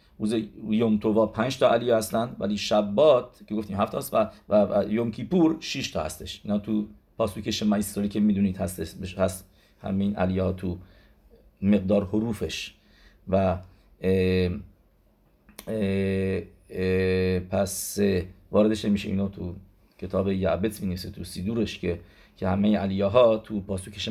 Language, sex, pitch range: English, male, 95-110 Hz